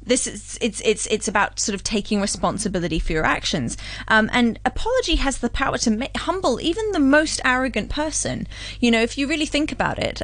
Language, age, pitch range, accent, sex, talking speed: English, 30-49, 195-250 Hz, British, female, 205 wpm